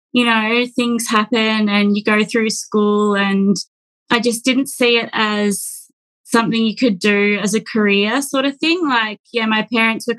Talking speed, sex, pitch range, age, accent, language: 185 wpm, female, 210-240 Hz, 20-39, Australian, English